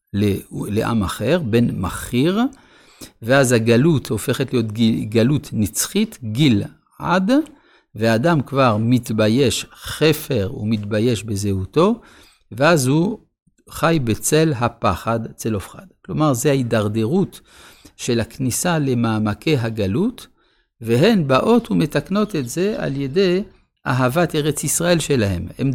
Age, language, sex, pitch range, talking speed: 60-79, Hebrew, male, 110-155 Hz, 100 wpm